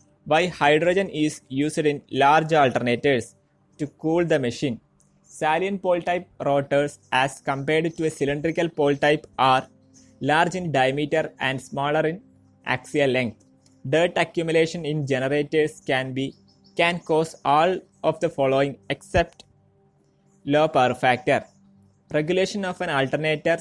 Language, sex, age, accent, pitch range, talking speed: Malayalam, male, 20-39, native, 130-160 Hz, 130 wpm